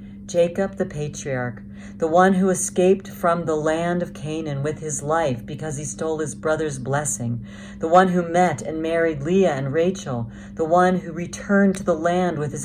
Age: 50-69